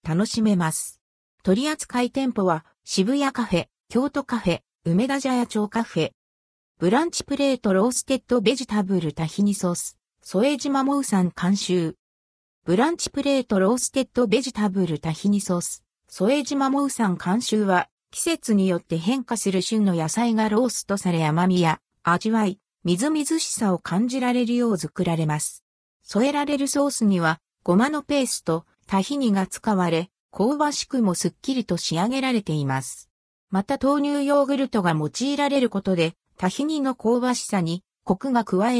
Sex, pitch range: female, 175-255 Hz